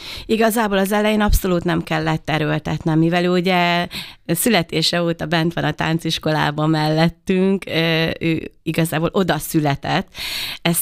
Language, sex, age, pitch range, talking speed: Hungarian, female, 30-49, 155-180 Hz, 115 wpm